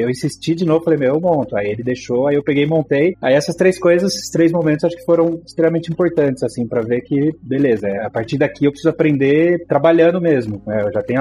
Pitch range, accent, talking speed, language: 115-160 Hz, Brazilian, 245 wpm, Portuguese